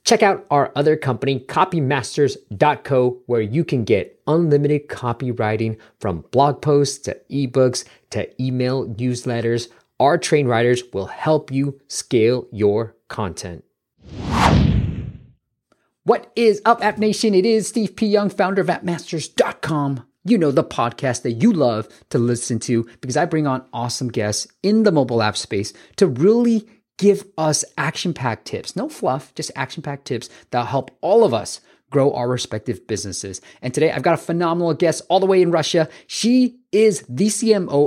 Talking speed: 155 wpm